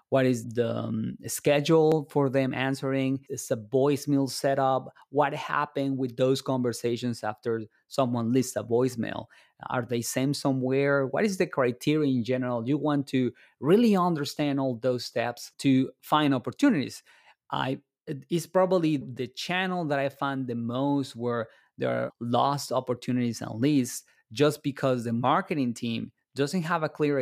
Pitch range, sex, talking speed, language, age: 120-145 Hz, male, 150 wpm, English, 20-39